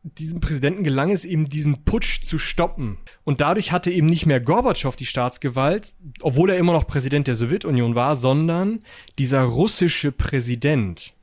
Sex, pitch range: male, 125-170 Hz